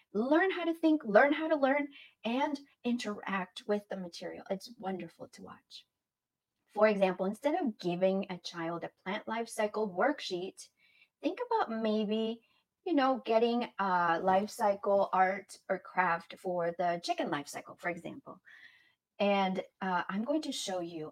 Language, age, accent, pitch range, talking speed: English, 30-49, American, 180-260 Hz, 155 wpm